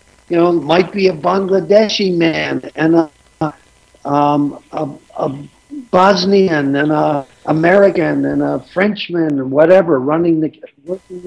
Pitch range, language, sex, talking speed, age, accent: 135-195 Hz, English, male, 135 wpm, 60-79, American